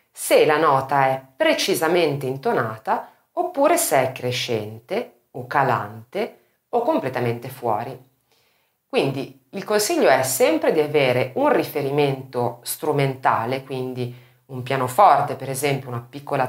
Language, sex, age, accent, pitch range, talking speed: Italian, female, 30-49, native, 125-170 Hz, 115 wpm